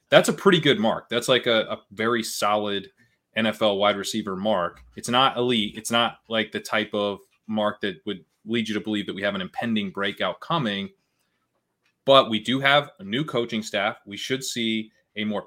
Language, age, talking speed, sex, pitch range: English, 20-39, 200 wpm, male, 100-125 Hz